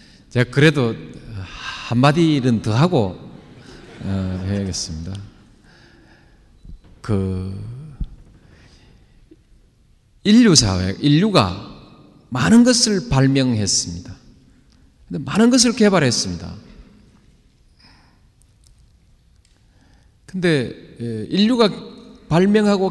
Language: Korean